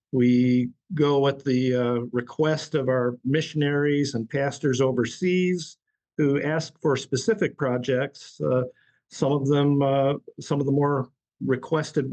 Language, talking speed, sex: English, 135 wpm, male